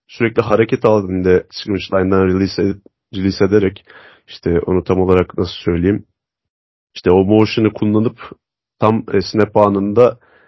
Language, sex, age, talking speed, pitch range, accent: Turkish, male, 30-49, 130 wpm, 95-115 Hz, native